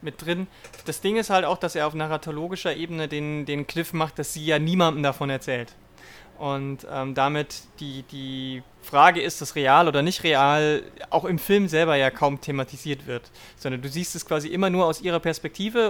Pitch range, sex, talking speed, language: 140-170 Hz, male, 195 wpm, German